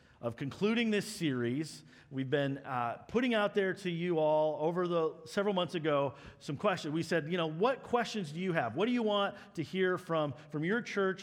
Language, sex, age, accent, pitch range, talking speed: English, male, 40-59, American, 145-195 Hz, 210 wpm